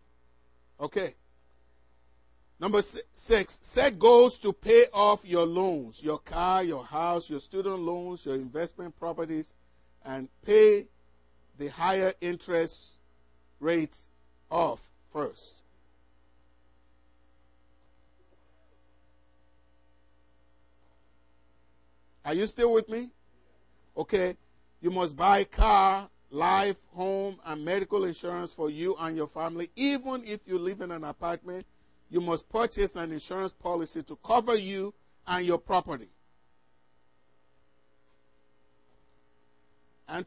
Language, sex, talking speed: English, male, 105 wpm